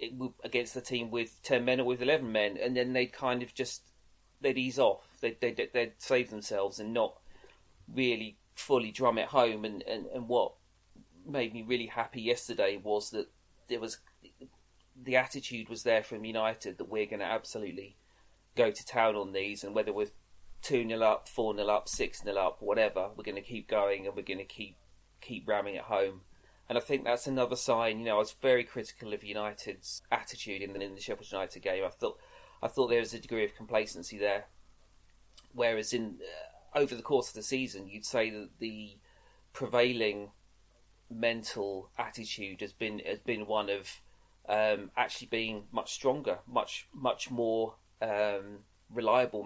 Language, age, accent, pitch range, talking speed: English, 30-49, British, 100-120 Hz, 185 wpm